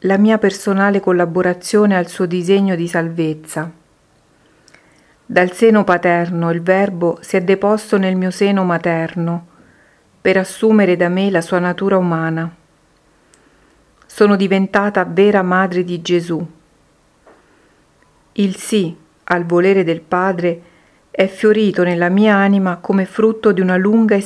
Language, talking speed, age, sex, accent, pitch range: Italian, 130 wpm, 50-69, female, native, 175-195 Hz